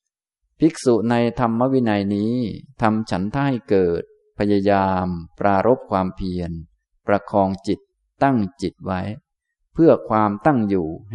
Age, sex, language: 20-39, male, Thai